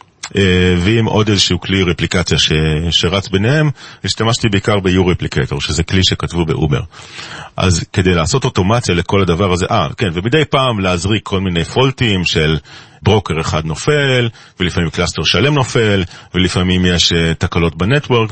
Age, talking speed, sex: 40-59, 140 wpm, male